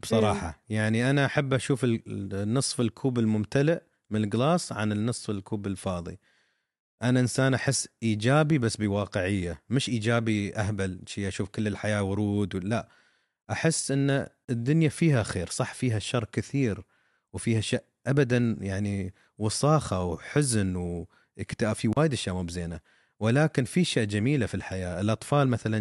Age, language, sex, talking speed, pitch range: 30-49, Arabic, male, 130 wpm, 105-145 Hz